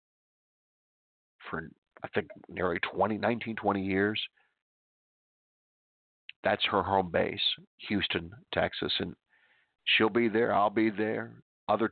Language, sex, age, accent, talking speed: English, male, 50-69, American, 110 wpm